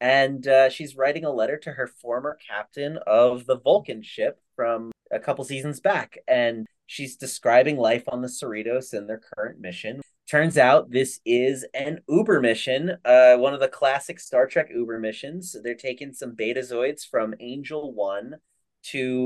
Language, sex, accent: English, male, American